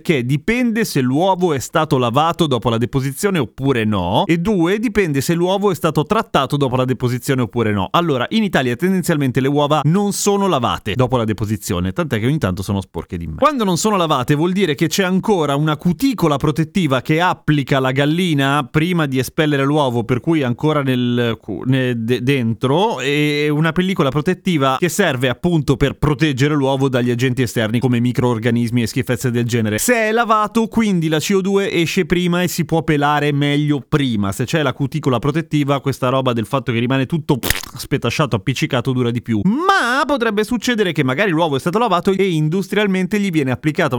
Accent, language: native, Italian